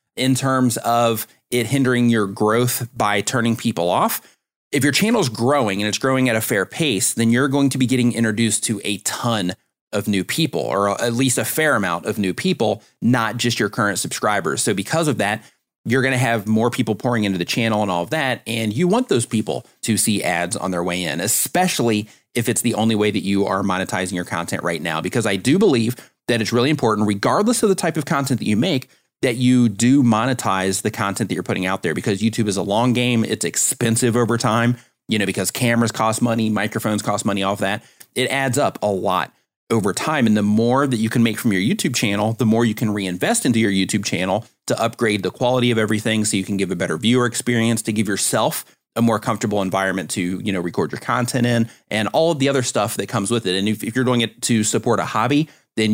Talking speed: 235 wpm